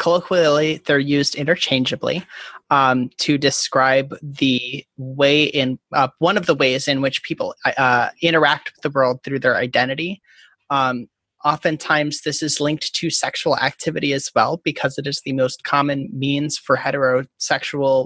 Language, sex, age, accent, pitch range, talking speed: English, male, 30-49, American, 135-160 Hz, 150 wpm